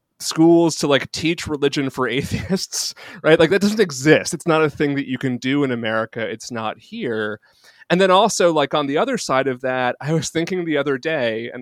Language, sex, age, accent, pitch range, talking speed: English, male, 30-49, American, 120-160 Hz, 215 wpm